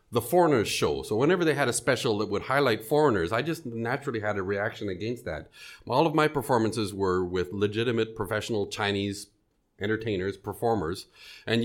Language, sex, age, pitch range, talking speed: English, male, 40-59, 105-135 Hz, 170 wpm